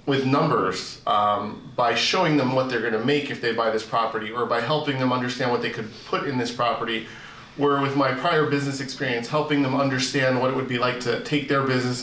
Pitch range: 115-140 Hz